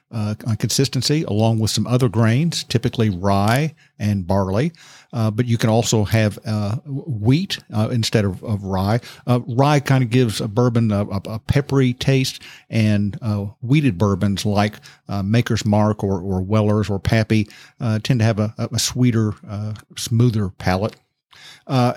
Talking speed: 165 wpm